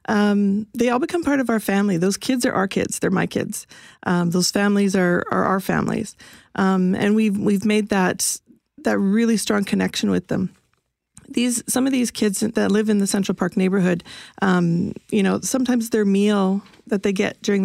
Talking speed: 195 wpm